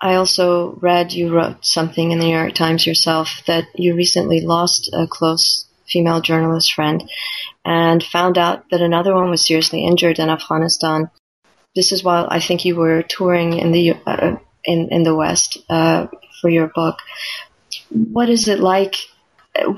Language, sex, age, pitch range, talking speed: English, female, 30-49, 165-185 Hz, 165 wpm